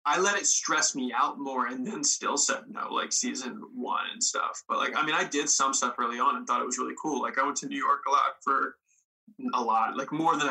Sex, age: male, 20-39